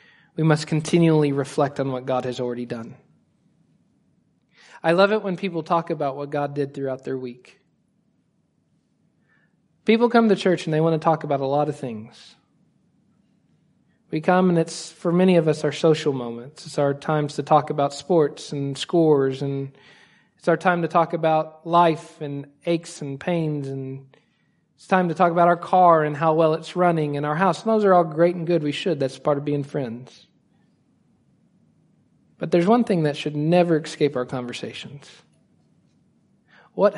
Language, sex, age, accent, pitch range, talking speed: English, male, 40-59, American, 145-185 Hz, 180 wpm